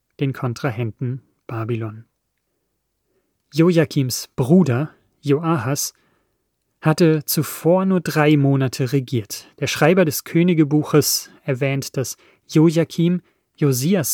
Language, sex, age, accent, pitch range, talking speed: German, male, 30-49, German, 130-155 Hz, 85 wpm